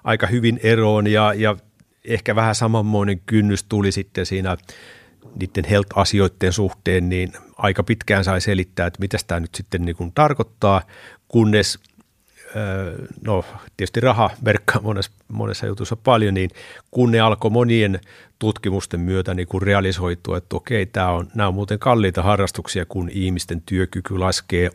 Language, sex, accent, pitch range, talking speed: Finnish, male, native, 95-110 Hz, 140 wpm